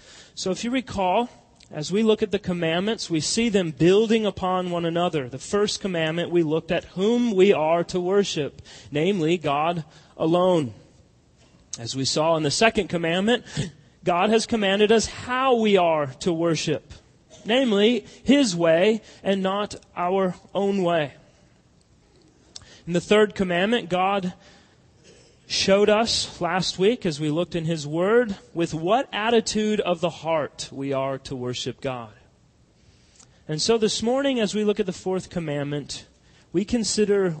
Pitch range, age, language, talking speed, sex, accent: 155-215 Hz, 30-49, English, 150 wpm, male, American